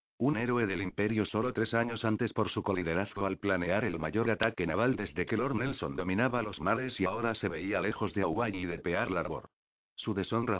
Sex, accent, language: male, Spanish, Spanish